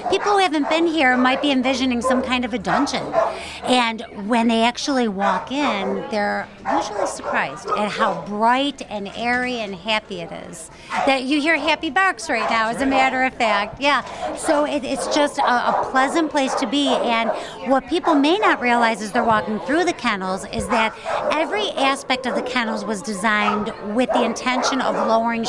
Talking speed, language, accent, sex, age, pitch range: 190 wpm, English, American, female, 40-59, 215-270 Hz